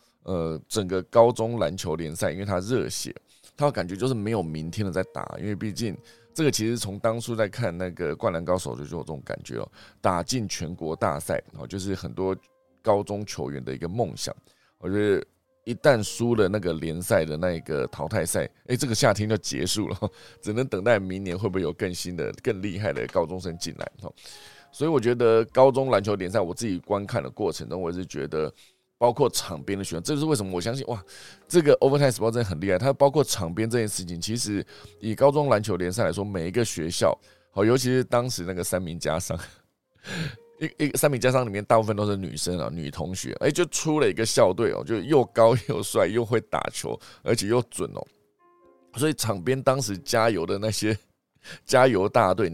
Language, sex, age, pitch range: Chinese, male, 20-39, 90-120 Hz